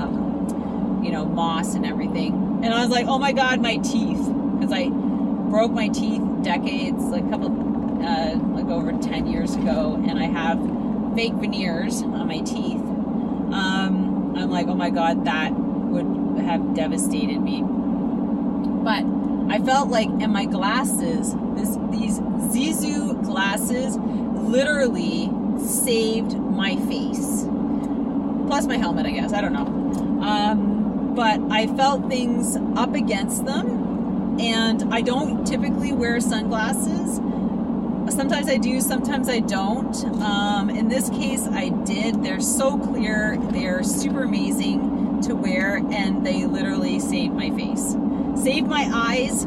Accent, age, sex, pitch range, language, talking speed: American, 30-49, female, 230-255 Hz, English, 135 wpm